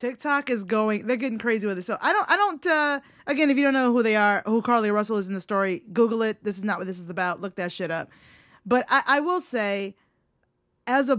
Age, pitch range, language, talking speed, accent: 20-39, 195-245 Hz, English, 250 wpm, American